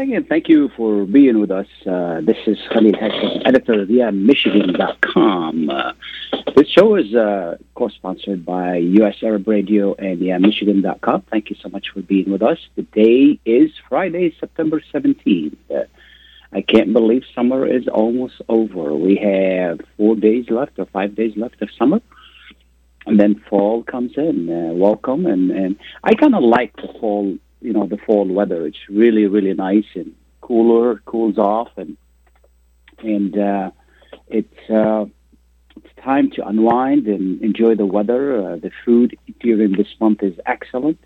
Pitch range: 100-120 Hz